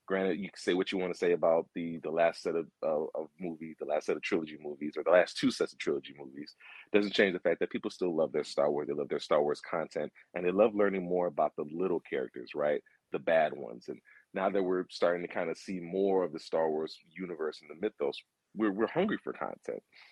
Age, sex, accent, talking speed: 40-59, male, American, 255 wpm